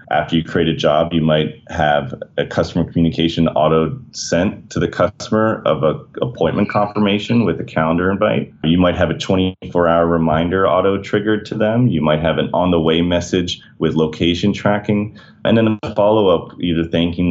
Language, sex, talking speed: English, male, 165 wpm